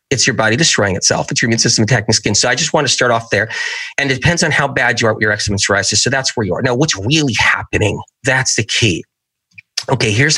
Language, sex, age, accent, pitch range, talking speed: English, male, 30-49, American, 110-145 Hz, 260 wpm